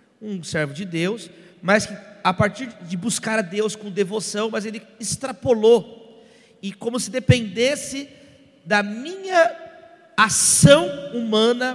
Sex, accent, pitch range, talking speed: male, Brazilian, 195-245 Hz, 125 wpm